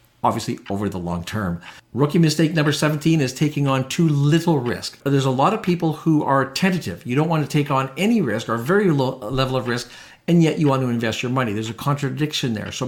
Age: 50-69